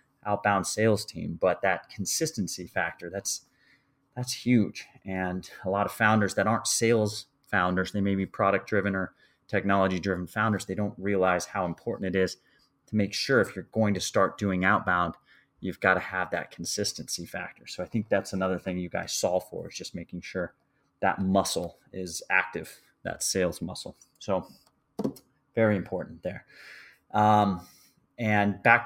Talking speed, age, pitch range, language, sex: 165 wpm, 30-49, 95-115 Hz, English, male